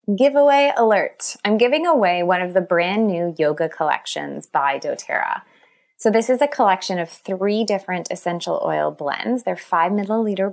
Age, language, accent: 20-39, English, American